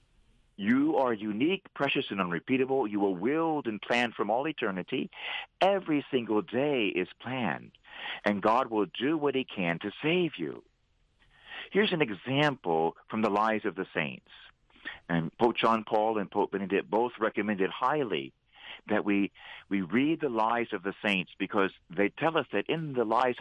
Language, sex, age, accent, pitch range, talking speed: English, male, 50-69, American, 100-135 Hz, 165 wpm